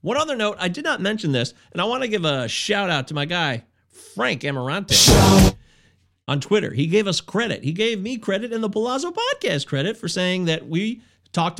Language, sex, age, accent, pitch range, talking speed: English, male, 30-49, American, 150-245 Hz, 205 wpm